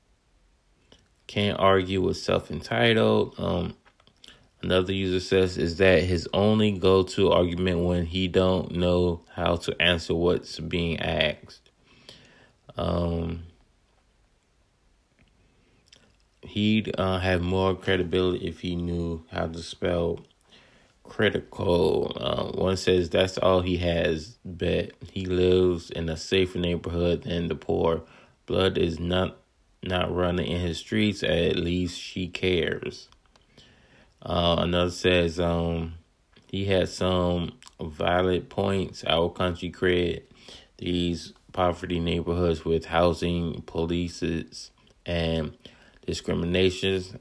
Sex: male